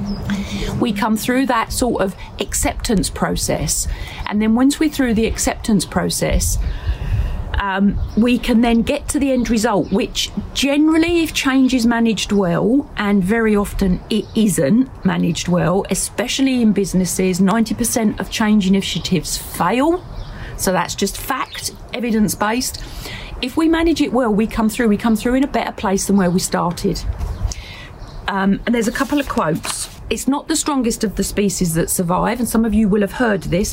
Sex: female